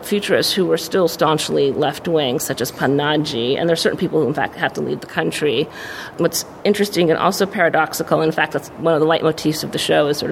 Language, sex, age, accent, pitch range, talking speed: English, female, 40-59, American, 160-185 Hz, 240 wpm